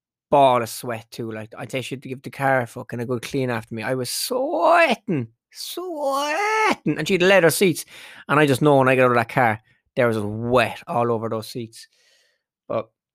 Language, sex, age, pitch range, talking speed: English, male, 20-39, 125-170 Hz, 225 wpm